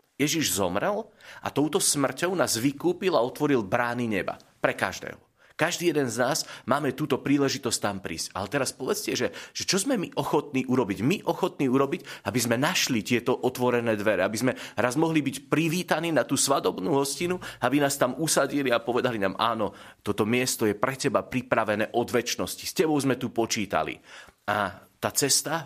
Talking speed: 175 wpm